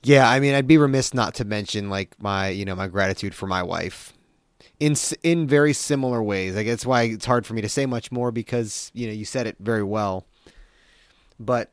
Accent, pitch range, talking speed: American, 95-120 Hz, 220 wpm